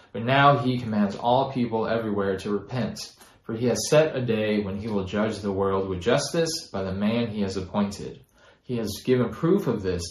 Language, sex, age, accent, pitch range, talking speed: English, male, 20-39, American, 105-145 Hz, 210 wpm